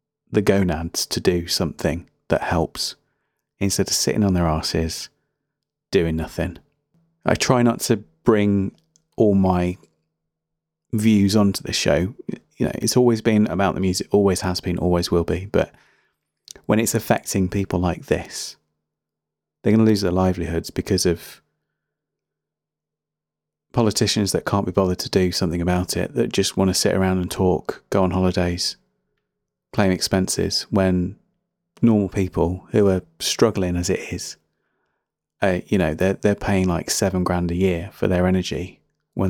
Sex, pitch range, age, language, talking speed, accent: male, 90-110 Hz, 30-49, English, 155 wpm, British